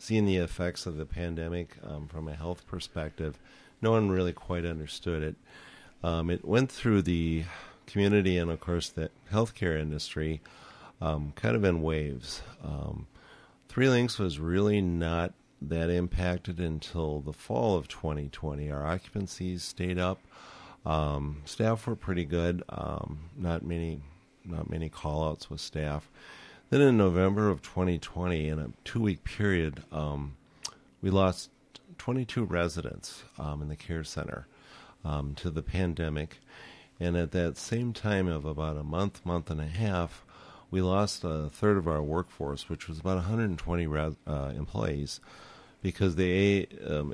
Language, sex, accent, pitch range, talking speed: English, male, American, 75-95 Hz, 150 wpm